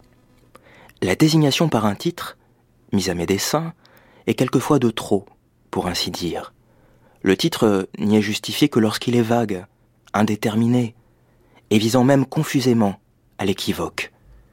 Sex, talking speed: male, 130 wpm